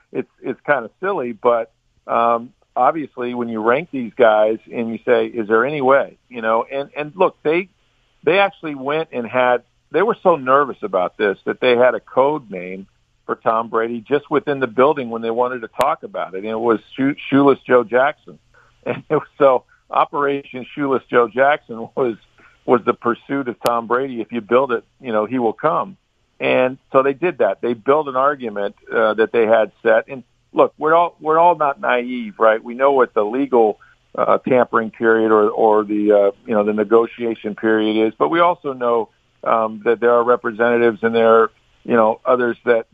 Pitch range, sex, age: 115-130 Hz, male, 50-69